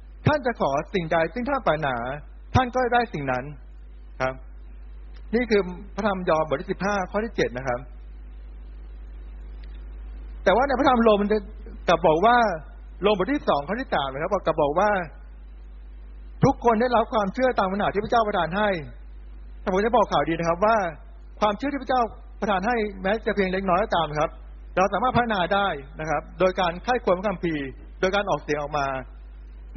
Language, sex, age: Thai, male, 60-79